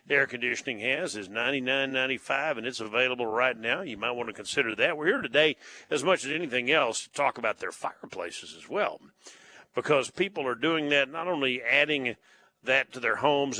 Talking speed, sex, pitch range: 205 wpm, male, 120-165 Hz